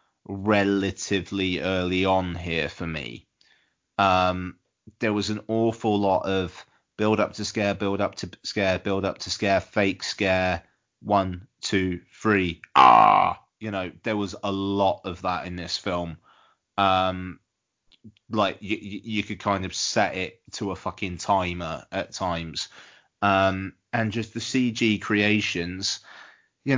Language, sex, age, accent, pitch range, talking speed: English, male, 30-49, British, 90-105 Hz, 140 wpm